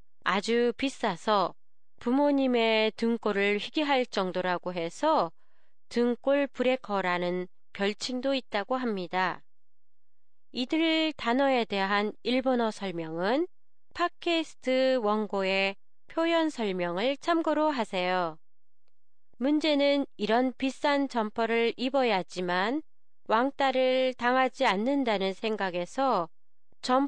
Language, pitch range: Japanese, 195-270 Hz